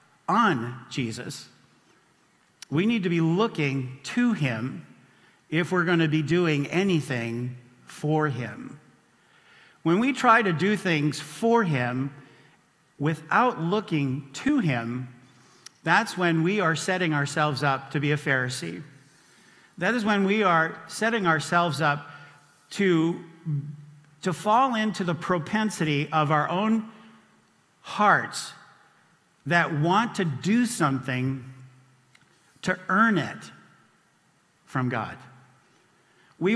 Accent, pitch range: American, 145-190 Hz